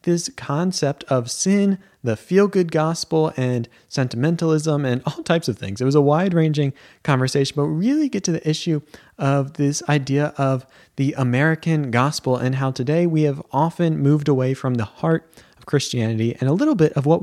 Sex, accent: male, American